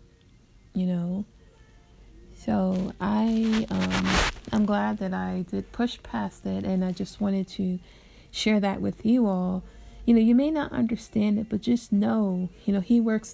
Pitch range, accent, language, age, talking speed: 185-215 Hz, American, English, 30-49, 165 wpm